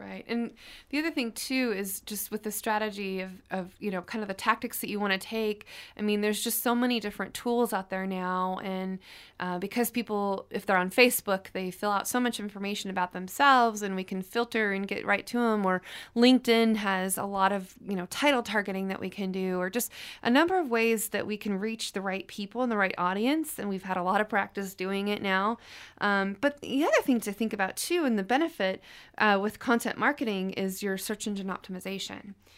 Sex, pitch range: female, 190-230 Hz